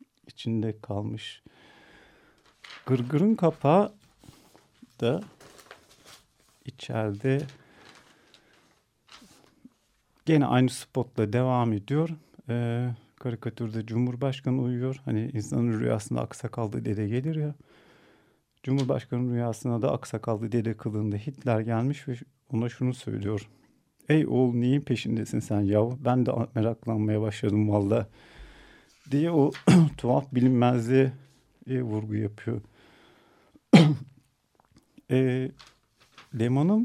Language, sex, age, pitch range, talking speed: Turkish, male, 50-69, 110-140 Hz, 90 wpm